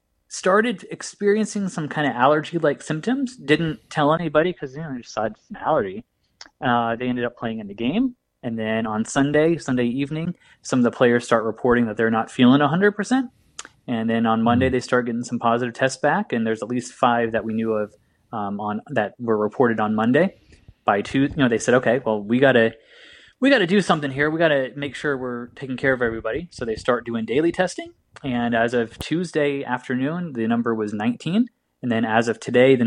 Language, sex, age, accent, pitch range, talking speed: English, male, 20-39, American, 115-155 Hz, 215 wpm